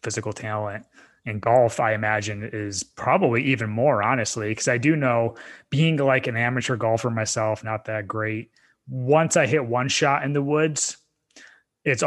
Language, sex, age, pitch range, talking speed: English, male, 20-39, 110-130 Hz, 165 wpm